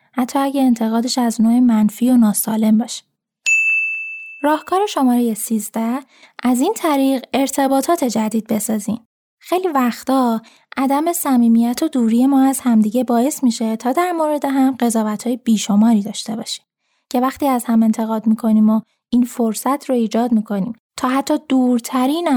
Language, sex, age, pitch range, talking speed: Persian, female, 10-29, 220-275 Hz, 140 wpm